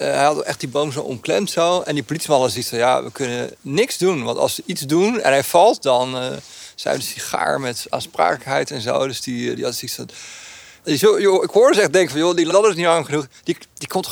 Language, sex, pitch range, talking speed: Dutch, male, 125-170 Hz, 250 wpm